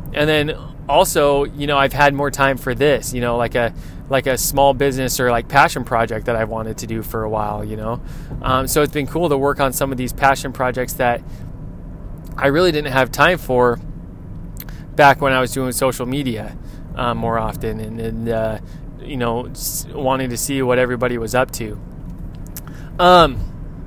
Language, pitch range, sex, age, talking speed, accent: English, 120-150 Hz, male, 20-39, 195 wpm, American